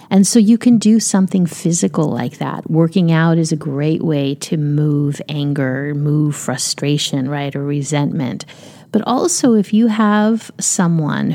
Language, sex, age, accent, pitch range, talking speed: English, female, 30-49, American, 155-195 Hz, 155 wpm